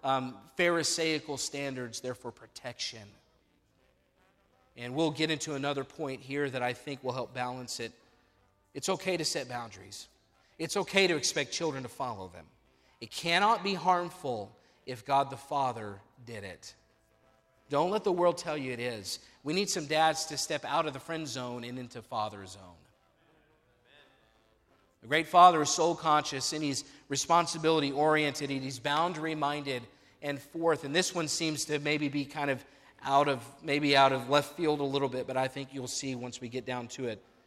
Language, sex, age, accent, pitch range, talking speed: English, male, 40-59, American, 125-165 Hz, 180 wpm